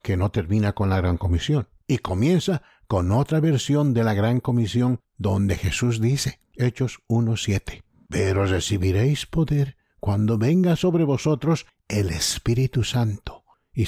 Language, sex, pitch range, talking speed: English, male, 105-140 Hz, 140 wpm